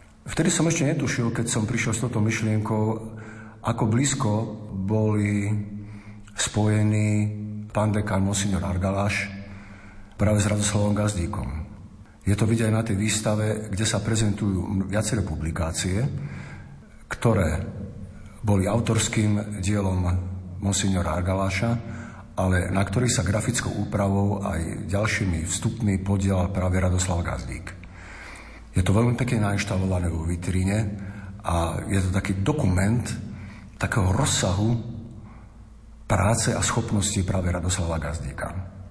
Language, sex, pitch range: Slovak, male, 95-110 Hz